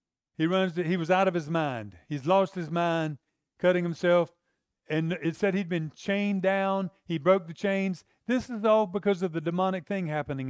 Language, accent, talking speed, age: English, American, 200 wpm, 50-69